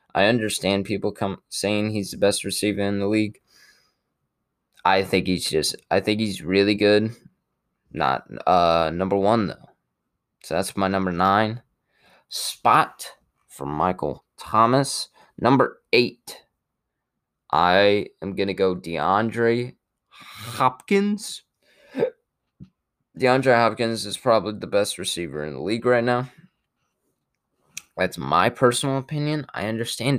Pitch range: 95-115 Hz